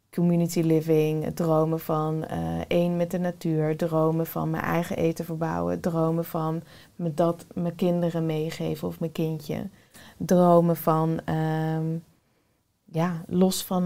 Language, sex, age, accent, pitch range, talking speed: Dutch, female, 20-39, Dutch, 160-190 Hz, 140 wpm